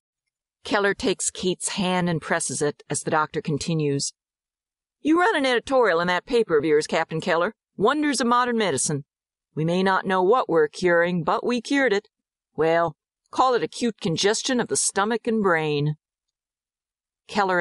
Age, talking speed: 50-69, 165 wpm